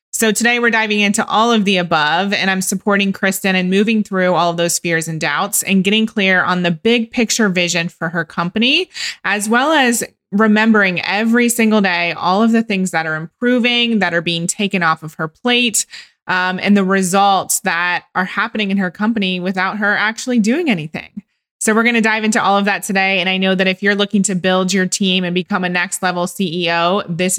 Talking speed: 215 wpm